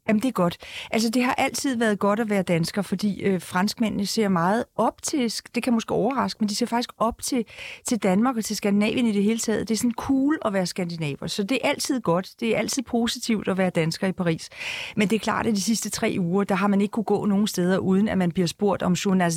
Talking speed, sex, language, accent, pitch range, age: 260 wpm, female, Danish, native, 195-245 Hz, 40-59